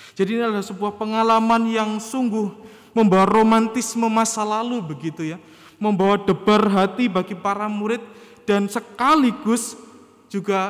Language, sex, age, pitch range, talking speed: Indonesian, male, 20-39, 140-225 Hz, 125 wpm